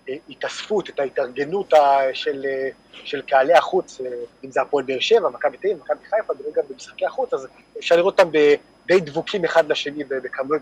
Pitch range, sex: 150-235 Hz, male